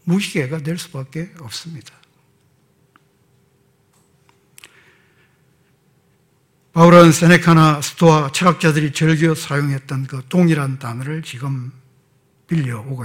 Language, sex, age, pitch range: Korean, male, 60-79, 140-190 Hz